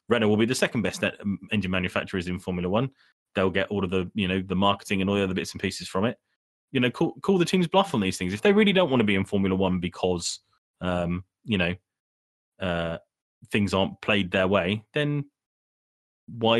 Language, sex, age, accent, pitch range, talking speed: English, male, 30-49, British, 95-115 Hz, 220 wpm